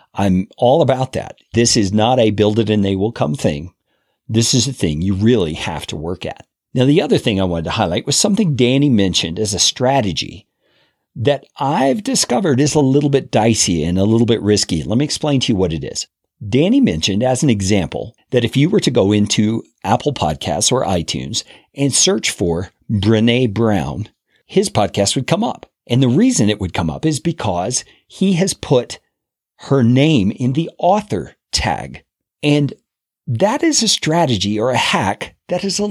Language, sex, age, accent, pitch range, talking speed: English, male, 50-69, American, 105-150 Hz, 195 wpm